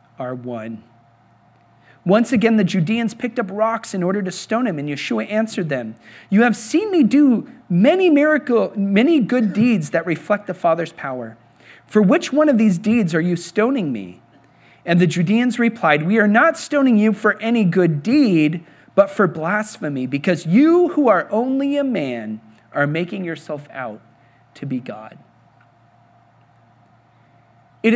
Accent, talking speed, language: American, 160 wpm, English